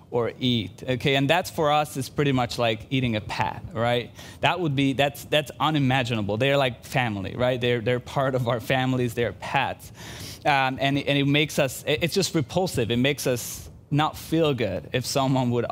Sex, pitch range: male, 125-155 Hz